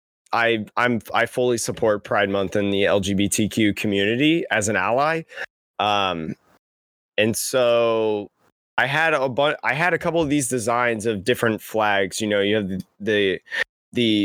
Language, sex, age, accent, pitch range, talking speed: English, male, 20-39, American, 105-130 Hz, 160 wpm